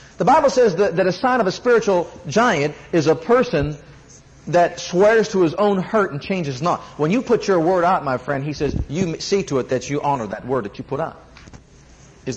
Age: 40-59